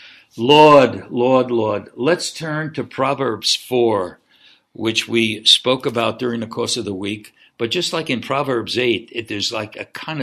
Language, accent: English, American